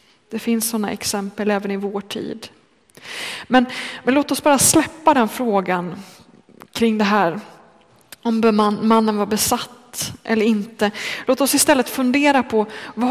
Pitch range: 210-245 Hz